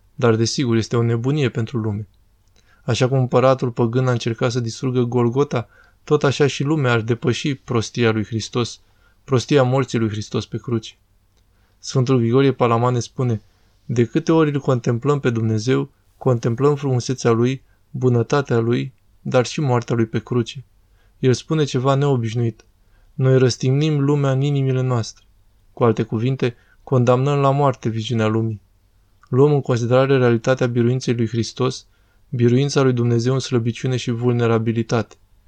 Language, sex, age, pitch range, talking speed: Romanian, male, 20-39, 115-135 Hz, 145 wpm